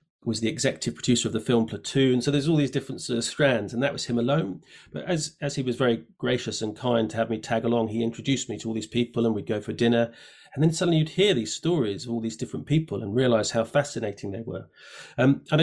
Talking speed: 250 wpm